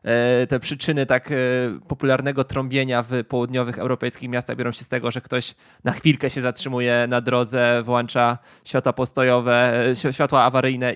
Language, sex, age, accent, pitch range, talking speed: Polish, male, 20-39, native, 125-140 Hz, 140 wpm